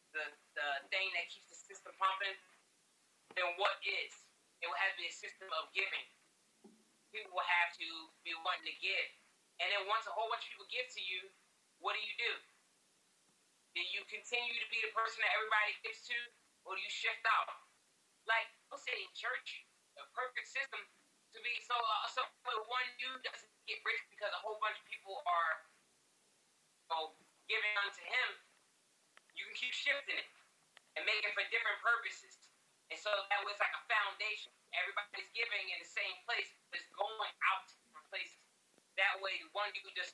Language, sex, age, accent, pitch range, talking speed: English, male, 30-49, American, 175-220 Hz, 190 wpm